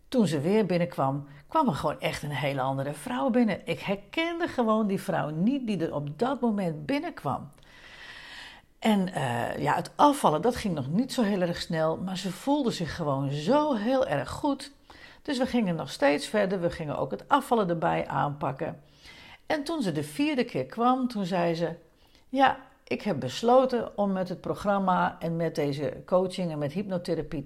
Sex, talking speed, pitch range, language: female, 185 wpm, 160-255 Hz, Dutch